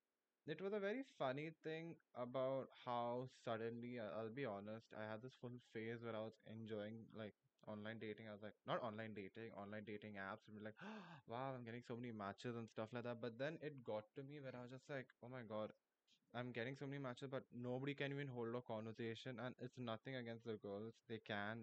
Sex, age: male, 10-29